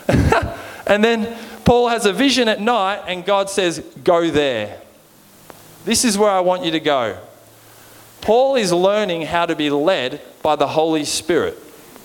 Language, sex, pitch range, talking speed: English, male, 140-180 Hz, 160 wpm